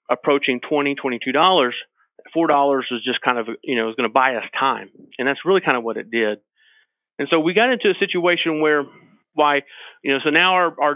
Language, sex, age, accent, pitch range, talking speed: English, male, 40-59, American, 120-150 Hz, 225 wpm